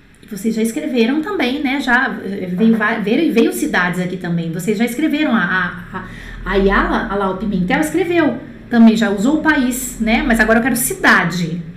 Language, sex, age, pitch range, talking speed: French, female, 30-49, 205-280 Hz, 175 wpm